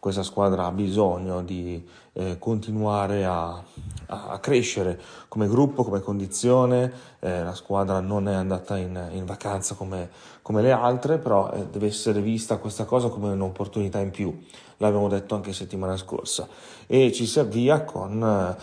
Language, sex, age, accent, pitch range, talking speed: Italian, male, 30-49, native, 95-110 Hz, 160 wpm